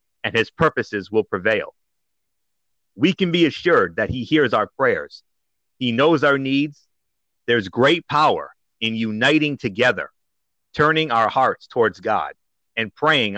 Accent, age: American, 50-69